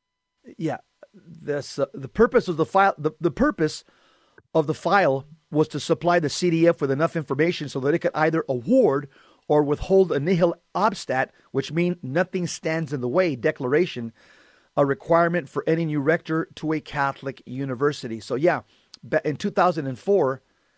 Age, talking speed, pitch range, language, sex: 40-59, 140 wpm, 140-175 Hz, English, male